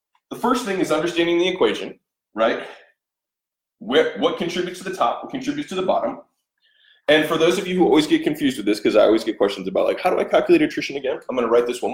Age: 20-39